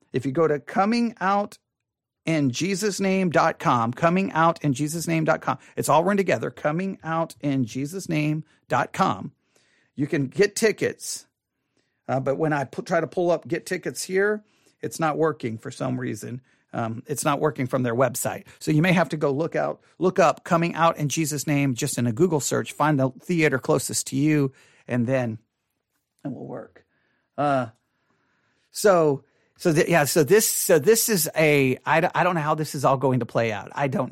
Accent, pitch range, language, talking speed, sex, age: American, 135-170 Hz, English, 170 wpm, male, 40-59